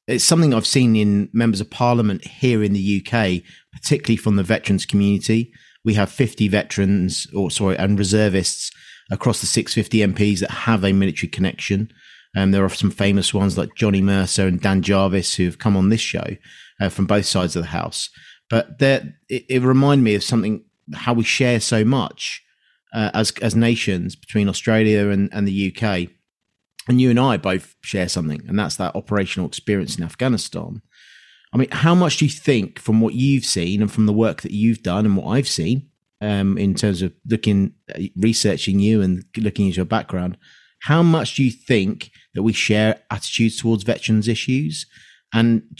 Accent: British